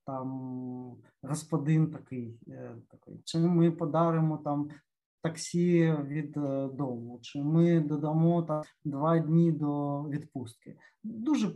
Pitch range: 140-170 Hz